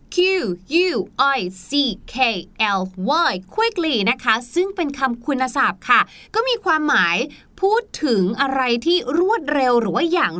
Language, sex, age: Thai, female, 20-39